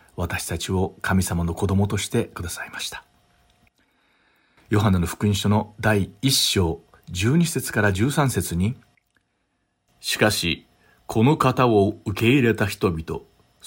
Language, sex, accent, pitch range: Japanese, male, native, 90-120 Hz